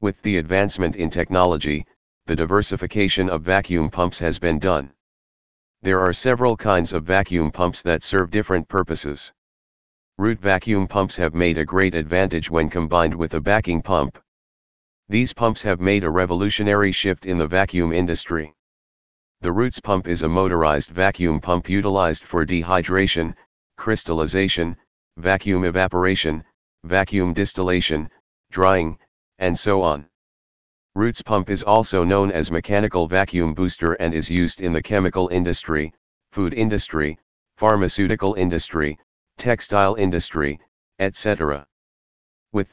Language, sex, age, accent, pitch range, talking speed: English, male, 40-59, American, 80-95 Hz, 130 wpm